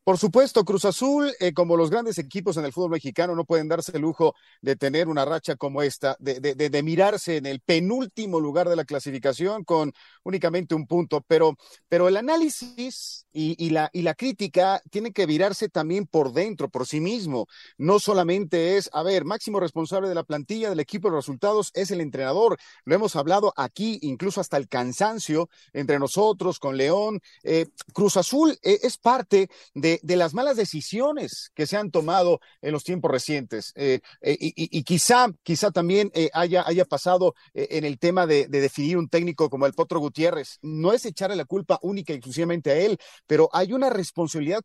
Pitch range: 150-200 Hz